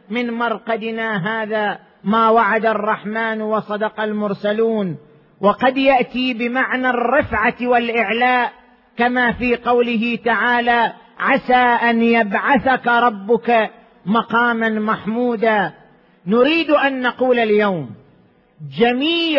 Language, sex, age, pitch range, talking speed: Arabic, male, 40-59, 215-250 Hz, 85 wpm